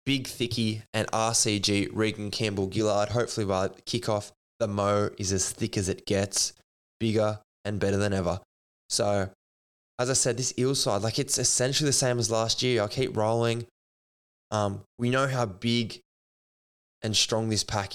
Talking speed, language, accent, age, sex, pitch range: 175 wpm, English, Australian, 10-29, male, 100-120 Hz